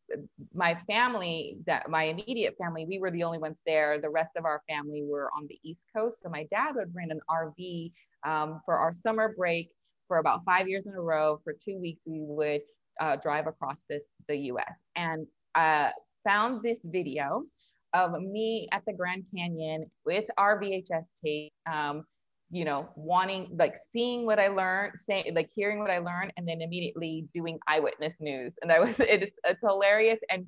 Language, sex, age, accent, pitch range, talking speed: English, female, 20-39, American, 160-210 Hz, 185 wpm